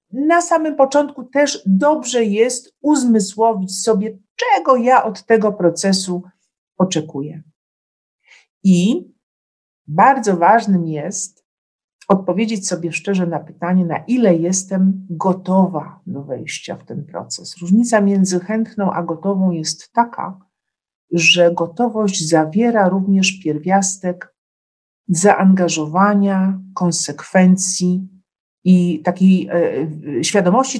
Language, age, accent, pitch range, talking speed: Polish, 50-69, native, 165-205 Hz, 95 wpm